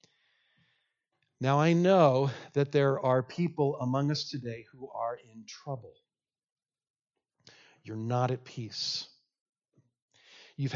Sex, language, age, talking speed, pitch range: male, English, 50-69, 105 wpm, 130-170 Hz